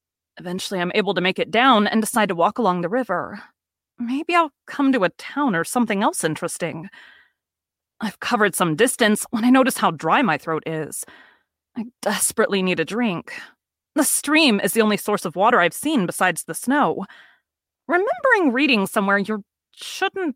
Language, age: English, 30-49